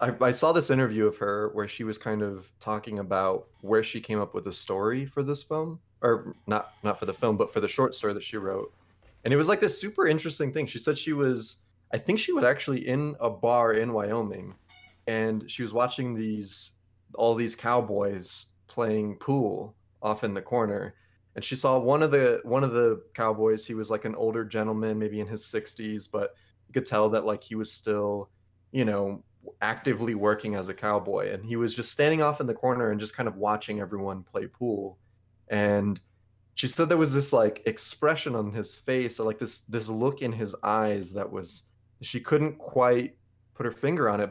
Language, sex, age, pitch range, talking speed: English, male, 20-39, 105-130 Hz, 210 wpm